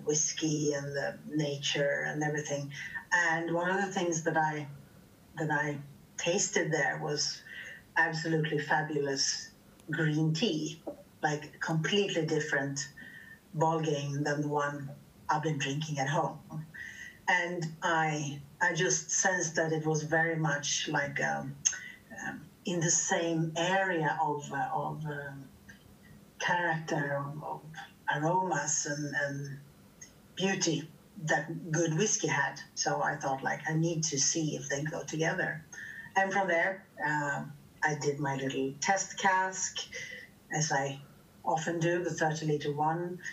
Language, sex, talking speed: English, female, 135 wpm